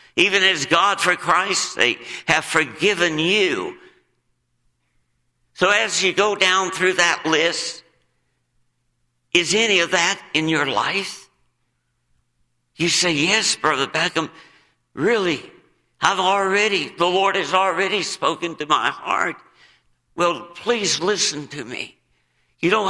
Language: English